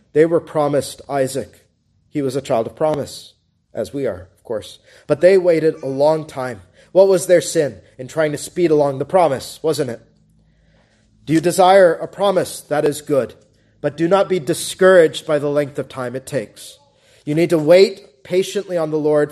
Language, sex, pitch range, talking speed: English, male, 145-190 Hz, 195 wpm